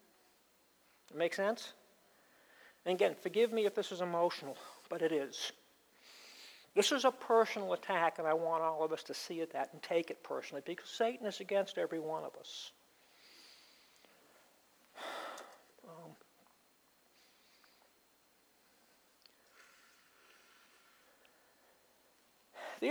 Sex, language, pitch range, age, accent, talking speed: male, English, 175-290 Hz, 60-79, American, 110 wpm